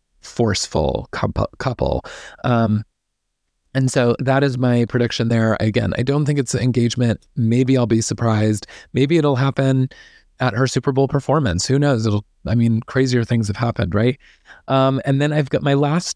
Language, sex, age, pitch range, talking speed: English, male, 30-49, 115-135 Hz, 170 wpm